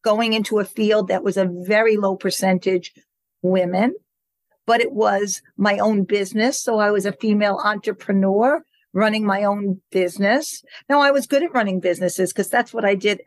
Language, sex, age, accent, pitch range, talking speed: English, female, 50-69, American, 195-230 Hz, 175 wpm